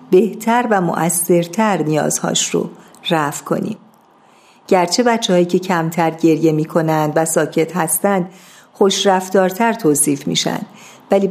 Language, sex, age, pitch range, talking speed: Persian, female, 50-69, 165-215 Hz, 110 wpm